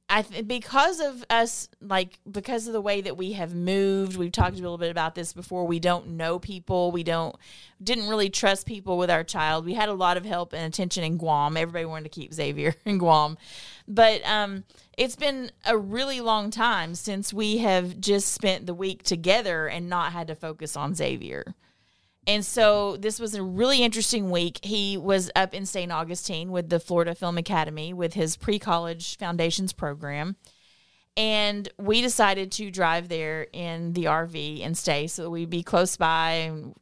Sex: female